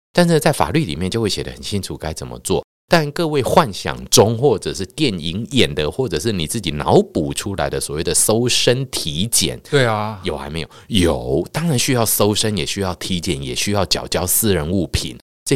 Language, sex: Chinese, male